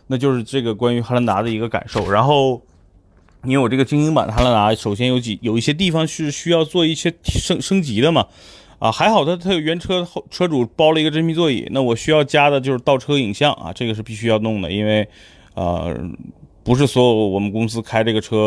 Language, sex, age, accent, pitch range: Chinese, male, 30-49, native, 105-140 Hz